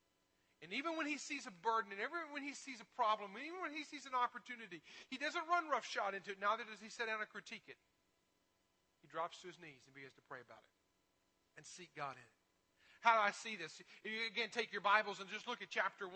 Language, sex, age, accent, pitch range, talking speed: English, male, 40-59, American, 175-230 Hz, 245 wpm